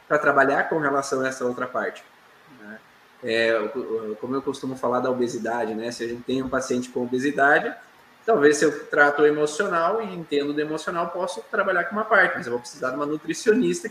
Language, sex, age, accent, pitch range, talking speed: Portuguese, male, 20-39, Brazilian, 140-200 Hz, 200 wpm